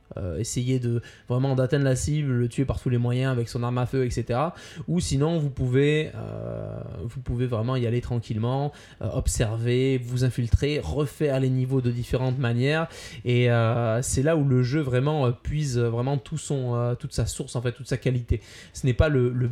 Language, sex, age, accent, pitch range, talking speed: French, male, 20-39, French, 120-140 Hz, 205 wpm